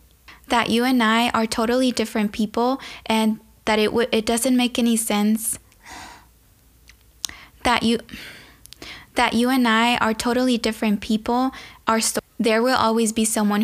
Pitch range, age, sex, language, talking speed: 220-250 Hz, 10-29, female, English, 150 wpm